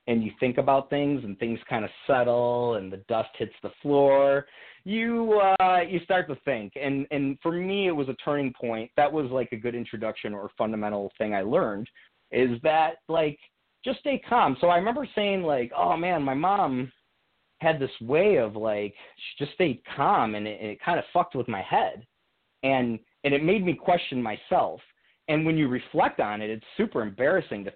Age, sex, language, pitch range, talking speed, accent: 30-49, male, English, 115-170 Hz, 205 wpm, American